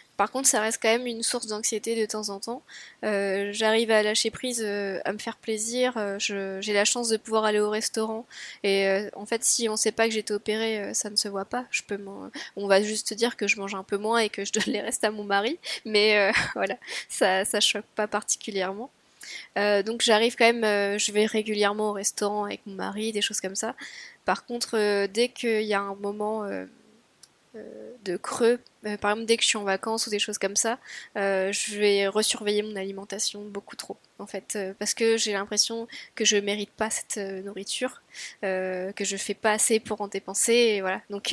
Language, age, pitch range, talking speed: French, 10-29, 195-225 Hz, 225 wpm